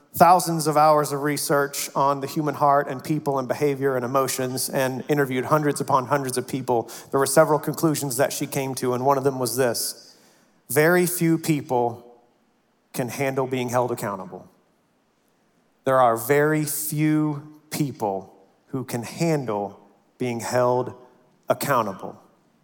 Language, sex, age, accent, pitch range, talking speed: English, male, 40-59, American, 135-175 Hz, 145 wpm